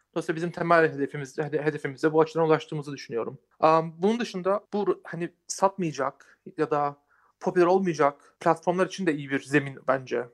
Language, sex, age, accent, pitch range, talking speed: Turkish, male, 40-59, native, 150-185 Hz, 150 wpm